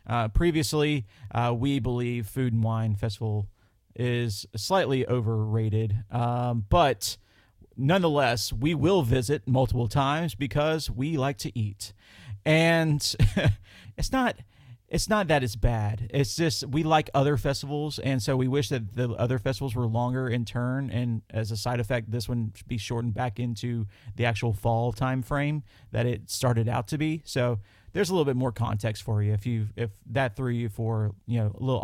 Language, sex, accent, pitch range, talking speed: English, male, American, 110-140 Hz, 175 wpm